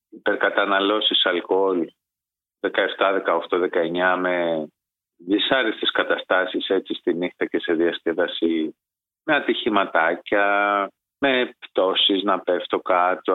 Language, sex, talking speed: Greek, male, 95 wpm